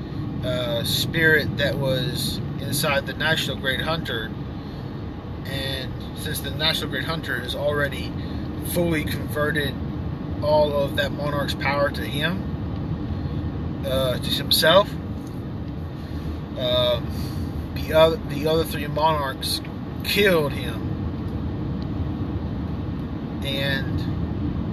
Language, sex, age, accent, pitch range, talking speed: English, male, 30-49, American, 120-155 Hz, 95 wpm